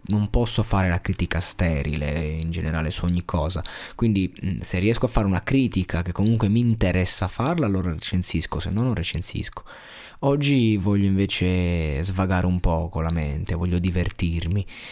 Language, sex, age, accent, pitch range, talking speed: Italian, male, 20-39, native, 85-105 Hz, 160 wpm